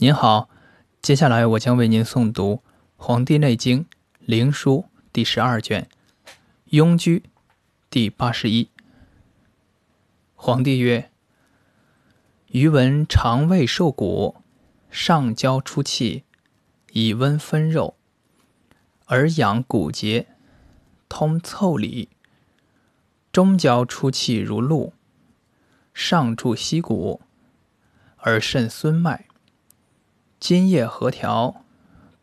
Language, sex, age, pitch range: Chinese, male, 20-39, 115-155 Hz